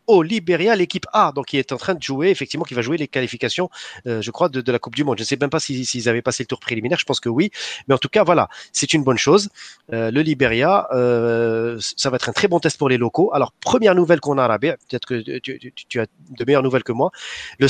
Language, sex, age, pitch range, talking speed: French, male, 30-49, 120-150 Hz, 285 wpm